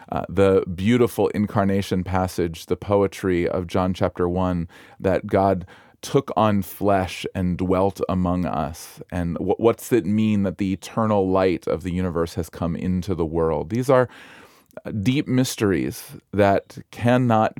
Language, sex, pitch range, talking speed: English, male, 90-110 Hz, 145 wpm